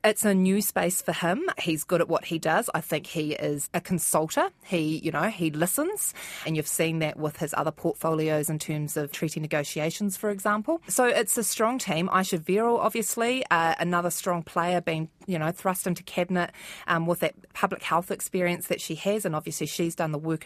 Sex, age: female, 20-39